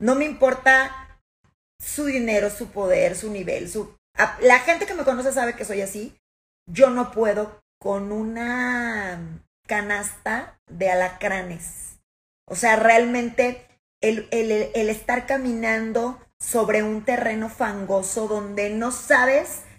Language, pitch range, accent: Spanish, 195-250 Hz, Mexican